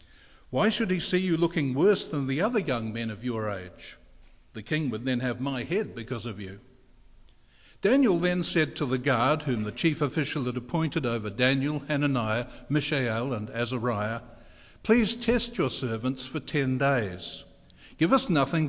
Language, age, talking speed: English, 60-79, 170 wpm